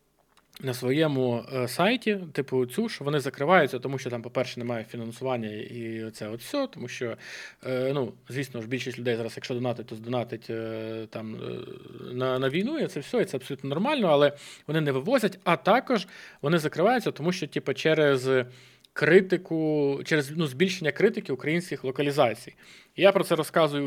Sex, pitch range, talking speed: male, 130-175 Hz, 160 wpm